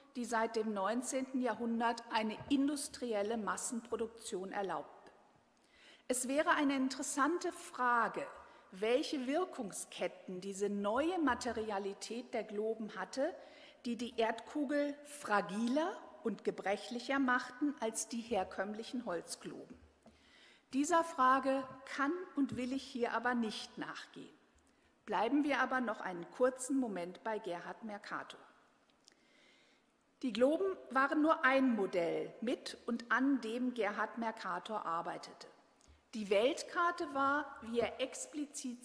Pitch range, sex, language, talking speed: 220-280 Hz, female, German, 110 wpm